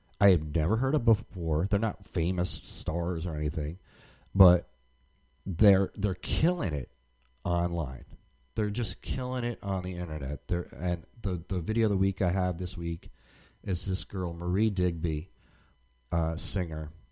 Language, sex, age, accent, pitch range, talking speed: English, male, 40-59, American, 80-100 Hz, 155 wpm